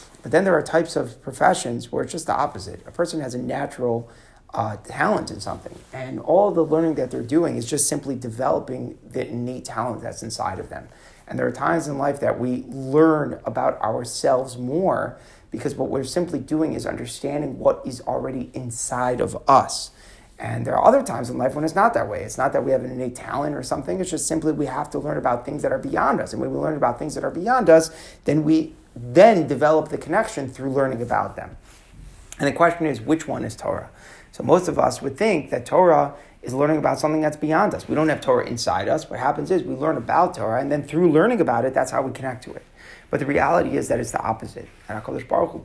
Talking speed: 235 wpm